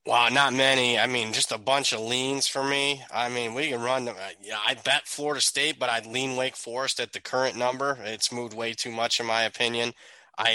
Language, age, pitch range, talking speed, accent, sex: English, 20-39, 110-130 Hz, 240 wpm, American, male